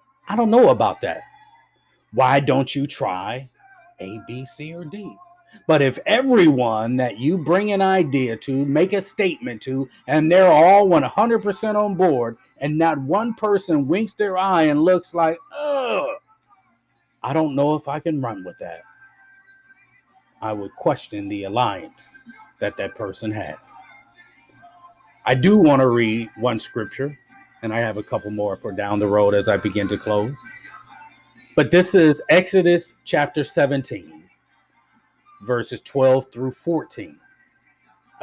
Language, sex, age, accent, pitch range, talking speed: English, male, 40-59, American, 130-195 Hz, 145 wpm